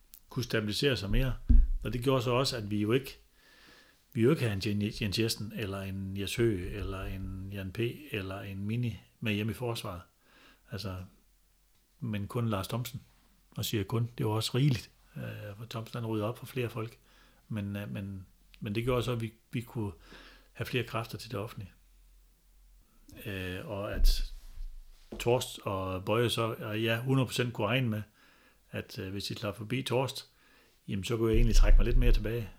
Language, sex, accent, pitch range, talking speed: Danish, male, native, 100-120 Hz, 175 wpm